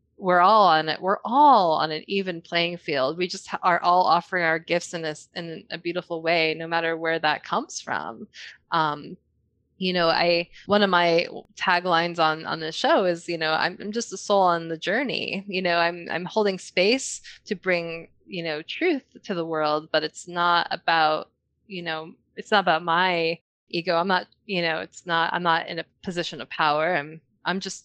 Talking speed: 205 wpm